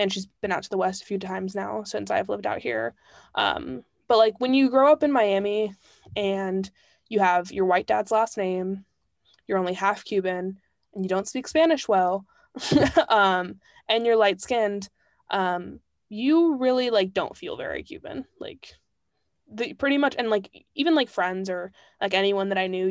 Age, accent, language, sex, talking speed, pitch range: 20-39, American, English, female, 185 wpm, 190-225 Hz